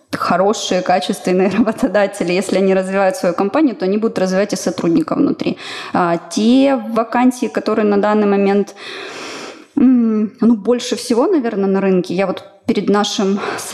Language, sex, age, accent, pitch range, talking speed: Ukrainian, female, 20-39, native, 195-260 Hz, 140 wpm